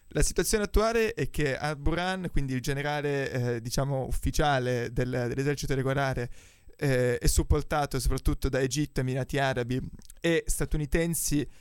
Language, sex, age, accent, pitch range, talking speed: Italian, male, 20-39, native, 130-150 Hz, 130 wpm